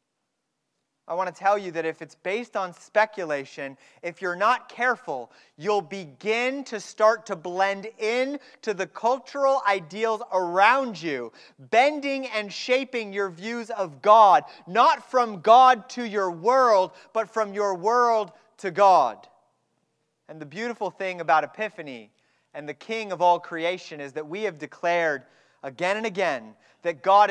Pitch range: 175-230 Hz